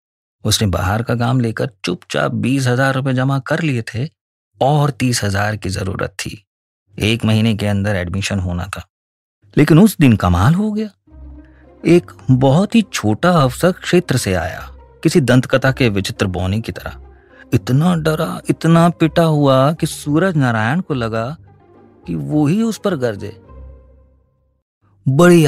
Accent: native